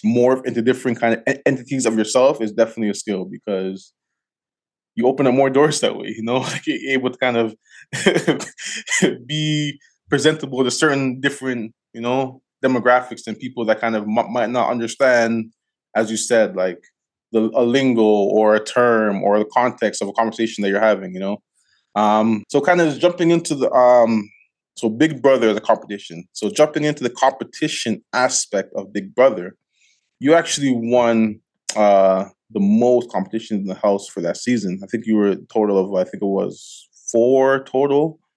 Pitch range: 105-130 Hz